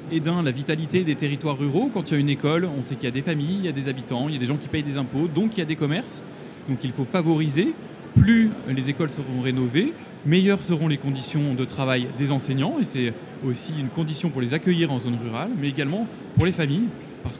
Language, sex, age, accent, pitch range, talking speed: French, male, 20-39, French, 130-165 Hz, 255 wpm